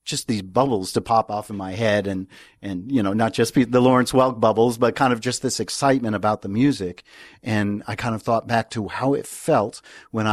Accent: American